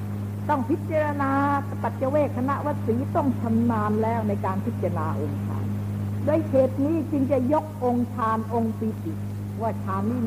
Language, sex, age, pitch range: Thai, female, 60-79, 100-105 Hz